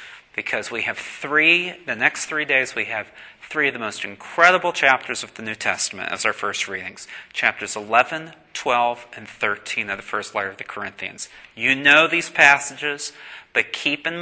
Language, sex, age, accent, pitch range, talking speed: English, male, 30-49, American, 125-175 Hz, 180 wpm